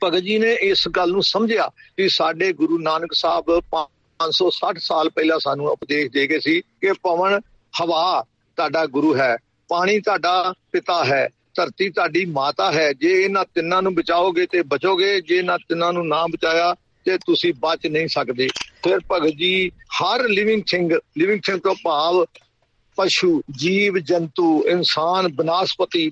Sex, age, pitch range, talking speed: male, 50-69, 160-185 Hz, 150 wpm